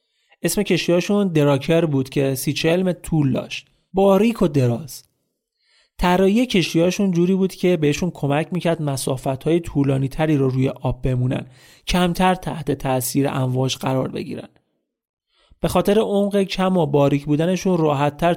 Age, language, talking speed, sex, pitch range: 30-49, Persian, 130 wpm, male, 135-180 Hz